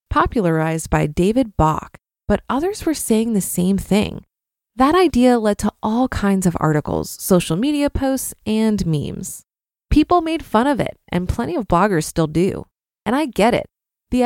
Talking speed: 170 wpm